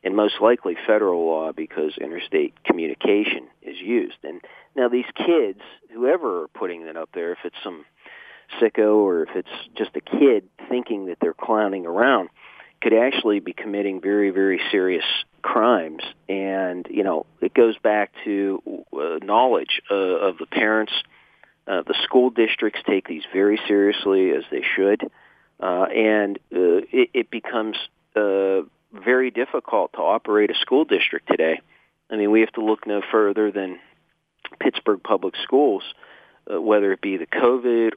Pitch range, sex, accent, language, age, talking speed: 95-120 Hz, male, American, English, 40-59, 155 wpm